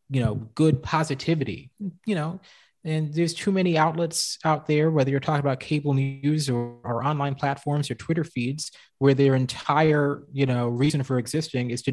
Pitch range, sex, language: 120-150 Hz, male, English